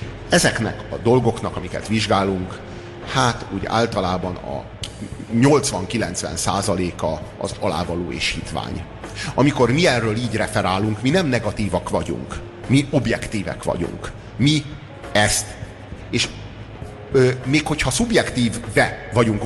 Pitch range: 105-135 Hz